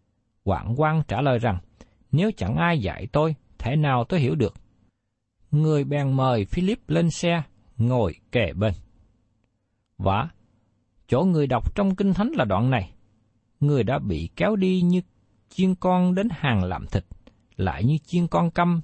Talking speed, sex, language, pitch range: 160 wpm, male, Vietnamese, 105-165 Hz